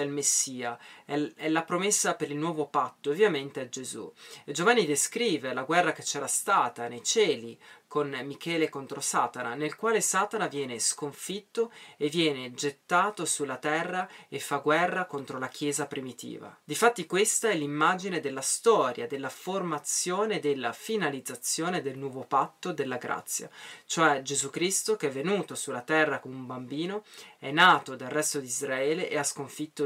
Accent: native